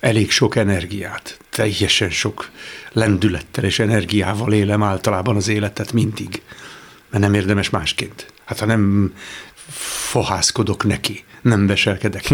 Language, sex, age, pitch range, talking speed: Hungarian, male, 60-79, 105-135 Hz, 115 wpm